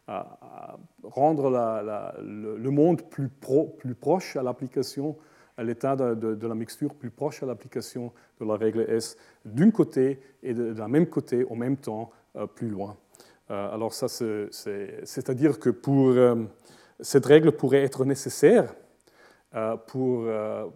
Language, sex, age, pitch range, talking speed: French, male, 40-59, 110-140 Hz, 150 wpm